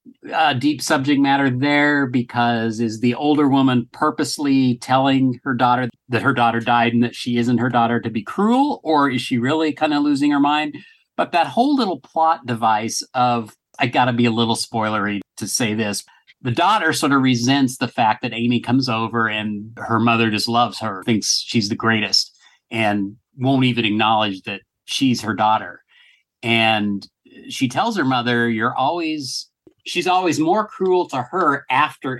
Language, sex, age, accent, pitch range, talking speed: English, male, 40-59, American, 115-150 Hz, 180 wpm